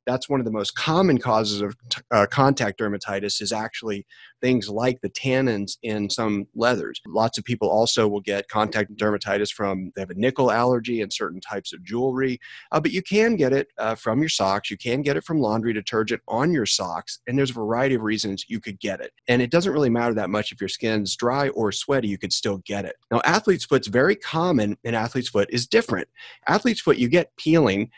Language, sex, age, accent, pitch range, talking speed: English, male, 30-49, American, 105-135 Hz, 220 wpm